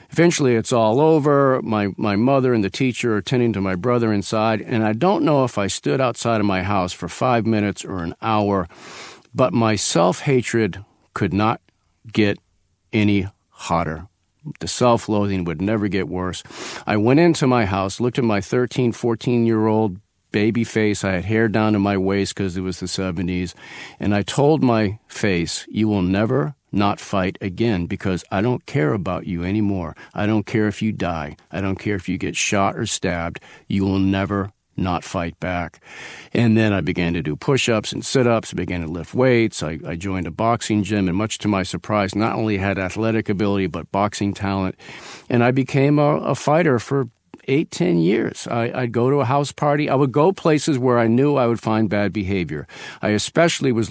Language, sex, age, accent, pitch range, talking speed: English, male, 50-69, American, 95-120 Hz, 195 wpm